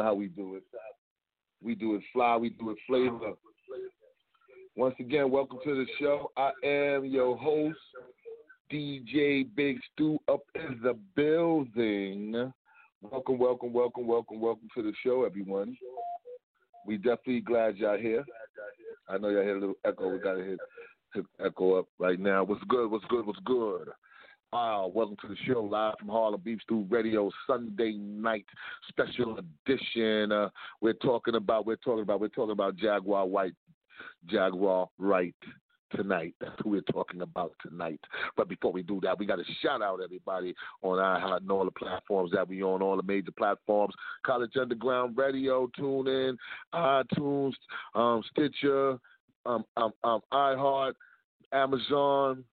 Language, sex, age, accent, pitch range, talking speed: English, male, 40-59, American, 105-140 Hz, 160 wpm